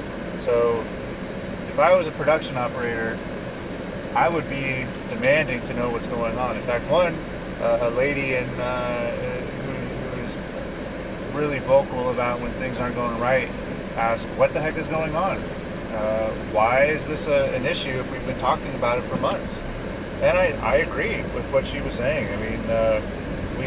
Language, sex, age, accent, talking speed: English, male, 30-49, American, 175 wpm